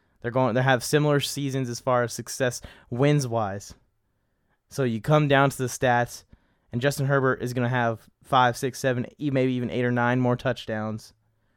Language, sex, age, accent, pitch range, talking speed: English, male, 20-39, American, 120-140 Hz, 190 wpm